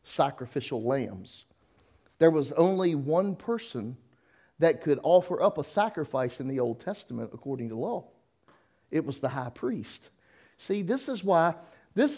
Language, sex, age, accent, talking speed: English, male, 50-69, American, 150 wpm